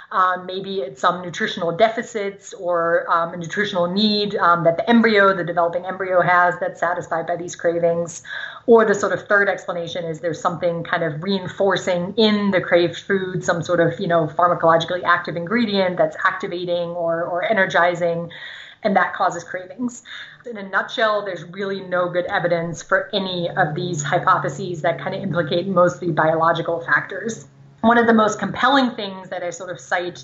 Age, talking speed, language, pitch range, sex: 30-49, 175 wpm, English, 175-200 Hz, female